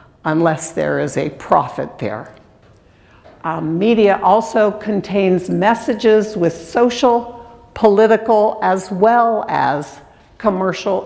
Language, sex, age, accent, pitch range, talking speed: English, female, 60-79, American, 150-195 Hz, 100 wpm